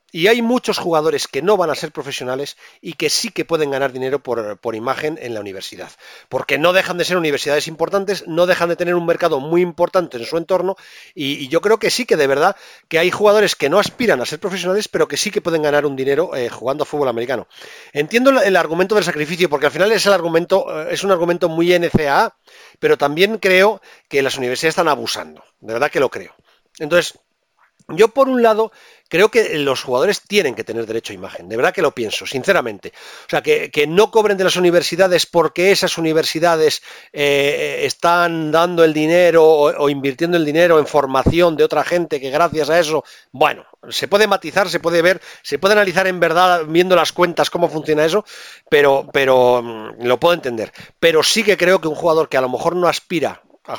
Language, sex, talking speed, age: Spanish, male, 210 wpm, 40-59